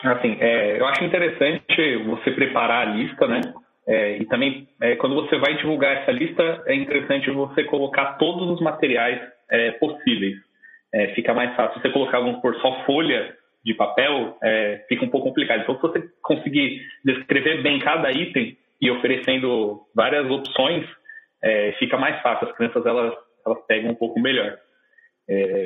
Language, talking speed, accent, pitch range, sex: Portuguese, 170 wpm, Brazilian, 130-175 Hz, male